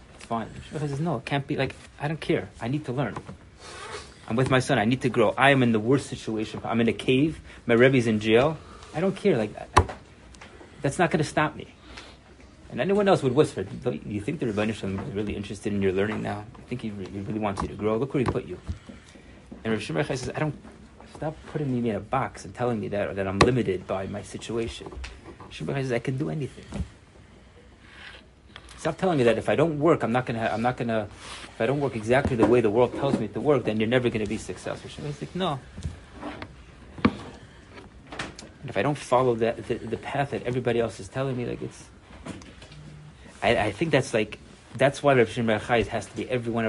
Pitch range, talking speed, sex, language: 105-135 Hz, 225 wpm, male, English